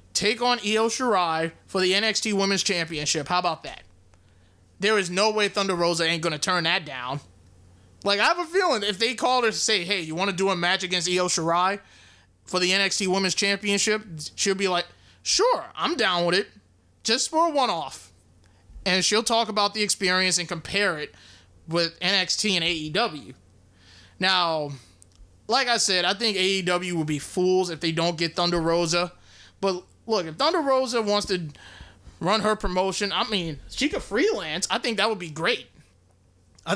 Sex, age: male, 20-39